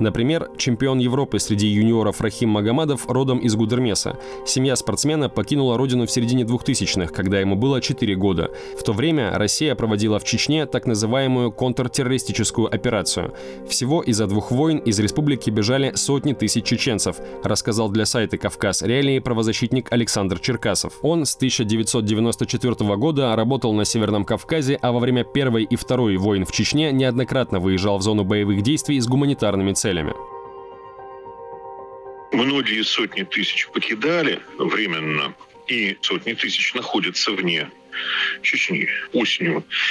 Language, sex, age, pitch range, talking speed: Russian, male, 20-39, 100-130 Hz, 135 wpm